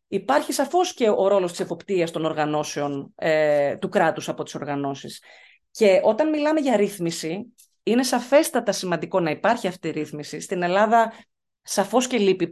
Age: 30-49